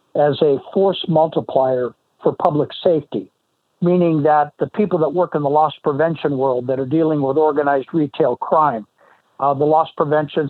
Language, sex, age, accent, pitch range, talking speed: English, male, 60-79, American, 140-165 Hz, 165 wpm